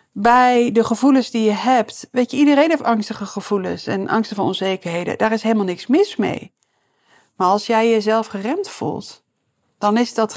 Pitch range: 200-240 Hz